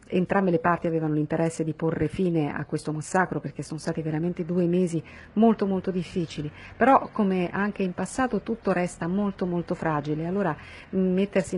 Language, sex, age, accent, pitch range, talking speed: Italian, female, 40-59, native, 160-195 Hz, 165 wpm